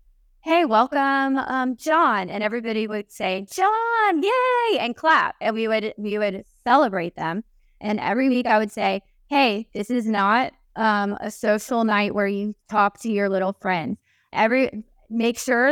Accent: American